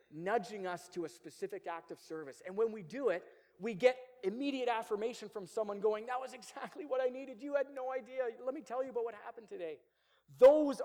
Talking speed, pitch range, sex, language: 215 wpm, 140-215 Hz, male, English